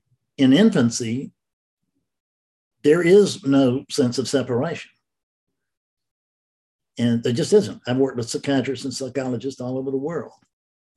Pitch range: 110-145 Hz